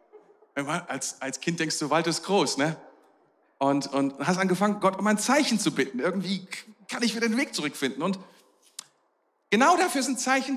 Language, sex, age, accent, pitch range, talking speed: German, male, 40-59, German, 195-275 Hz, 175 wpm